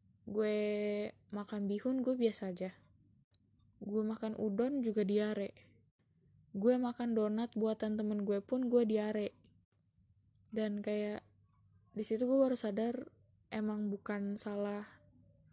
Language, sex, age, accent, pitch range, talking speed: Indonesian, female, 10-29, native, 205-230 Hz, 110 wpm